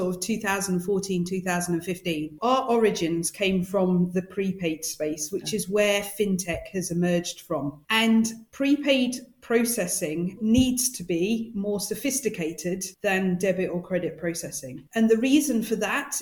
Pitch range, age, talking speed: 180-230 Hz, 40-59, 130 wpm